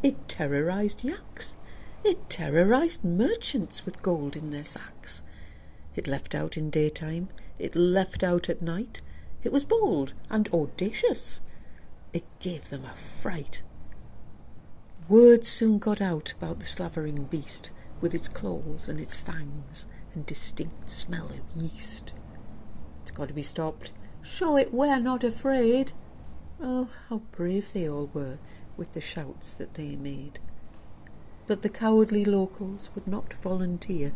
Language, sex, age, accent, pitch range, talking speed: English, female, 60-79, British, 140-230 Hz, 140 wpm